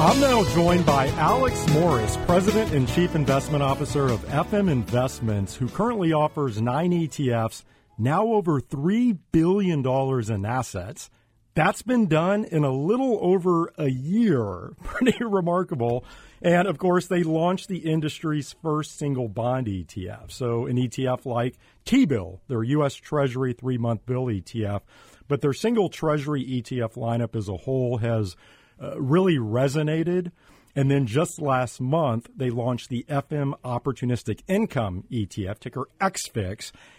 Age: 40-59